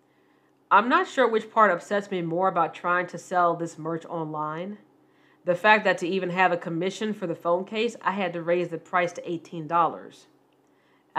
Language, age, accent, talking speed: English, 40-59, American, 190 wpm